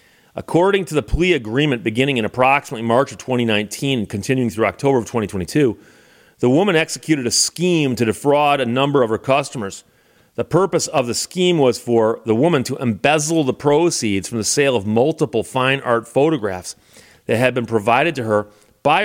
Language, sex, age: English, male, 40-59